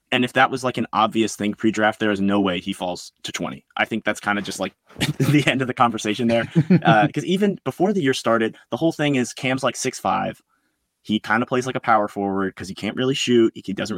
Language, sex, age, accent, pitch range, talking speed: English, male, 20-39, American, 105-130 Hz, 255 wpm